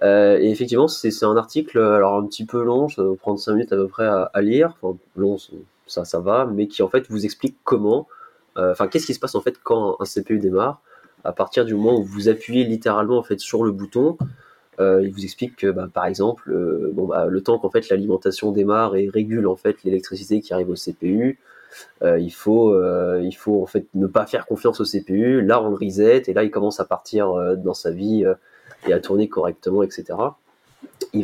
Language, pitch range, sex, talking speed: French, 95-120 Hz, male, 230 wpm